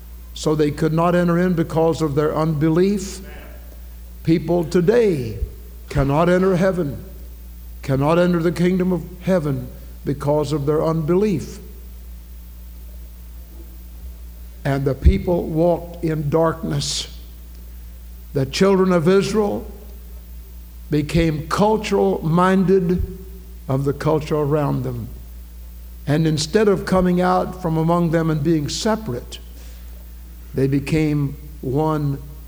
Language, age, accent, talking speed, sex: English, 60-79, American, 105 wpm, male